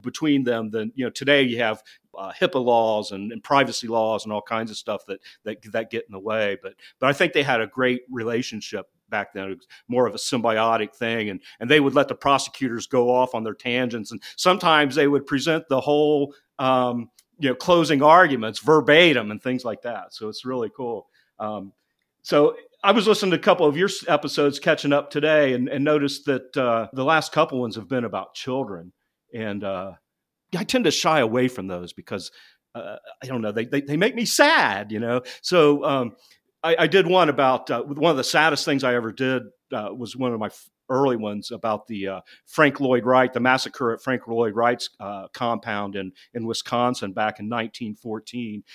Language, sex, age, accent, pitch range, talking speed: English, male, 50-69, American, 110-140 Hz, 205 wpm